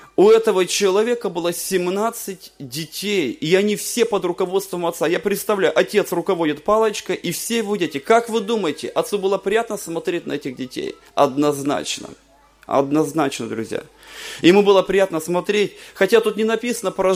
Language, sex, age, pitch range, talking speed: Russian, male, 30-49, 160-215 Hz, 150 wpm